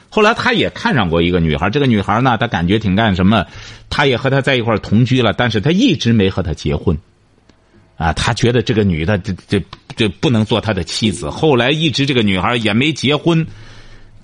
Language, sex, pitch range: Chinese, male, 110-180 Hz